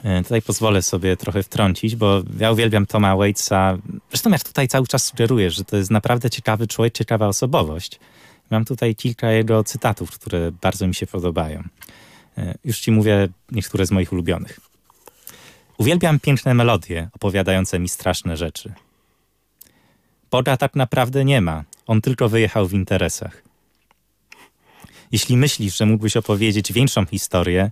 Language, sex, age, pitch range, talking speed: Polish, male, 20-39, 95-120 Hz, 140 wpm